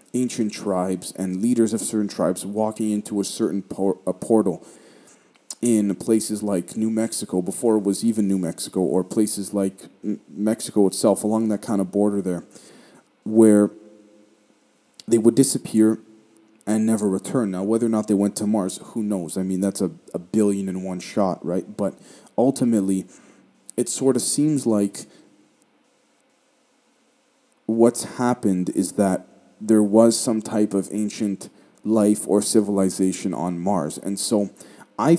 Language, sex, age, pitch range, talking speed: English, male, 30-49, 100-125 Hz, 150 wpm